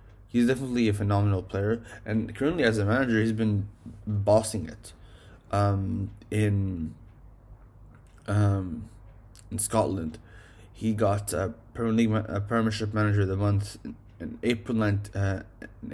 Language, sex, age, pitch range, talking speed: English, male, 20-39, 100-110 Hz, 120 wpm